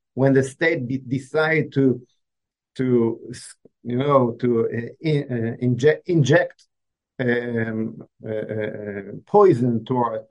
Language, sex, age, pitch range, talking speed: English, male, 50-69, 115-140 Hz, 115 wpm